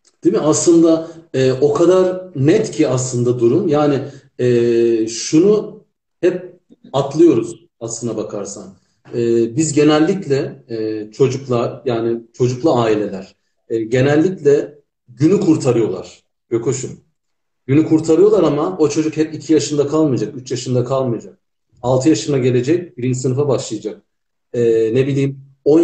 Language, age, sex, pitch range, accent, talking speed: Turkish, 40-59, male, 125-160 Hz, native, 120 wpm